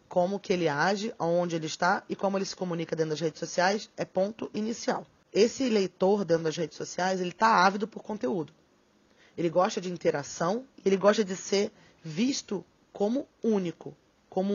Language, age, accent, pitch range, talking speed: Portuguese, 20-39, Brazilian, 170-205 Hz, 175 wpm